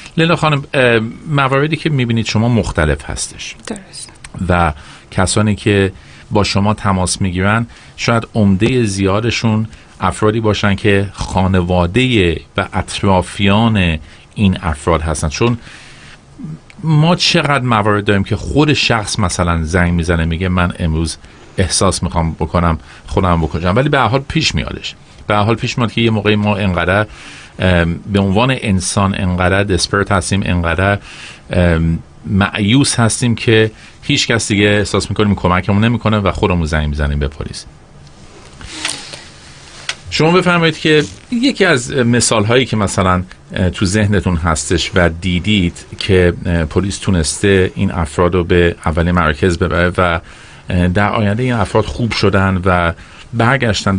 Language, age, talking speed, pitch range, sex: Persian, 50-69, 130 wpm, 85-110 Hz, male